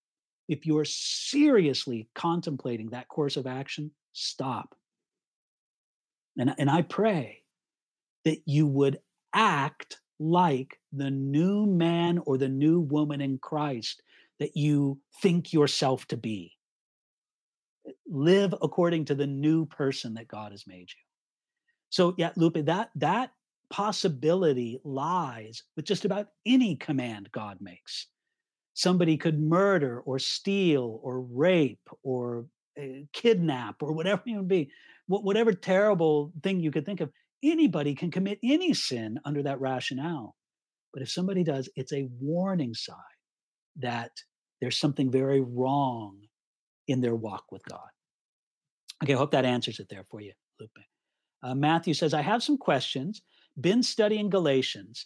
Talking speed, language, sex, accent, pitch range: 135 wpm, English, male, American, 130-180 Hz